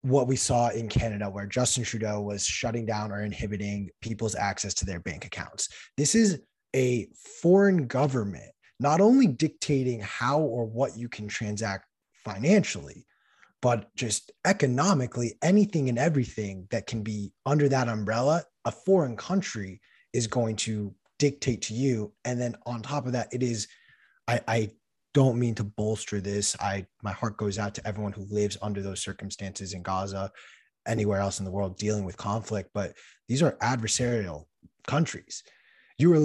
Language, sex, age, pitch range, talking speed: English, male, 20-39, 105-130 Hz, 165 wpm